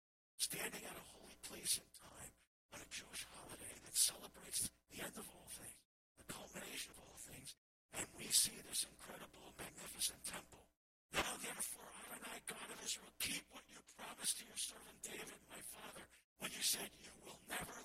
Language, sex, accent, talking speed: English, male, American, 180 wpm